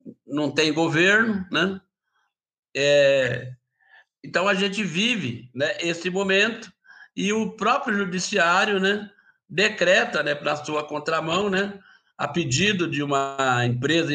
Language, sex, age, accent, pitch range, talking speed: English, male, 60-79, Brazilian, 145-190 Hz, 120 wpm